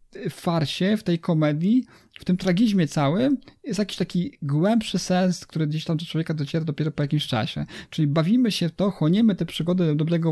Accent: native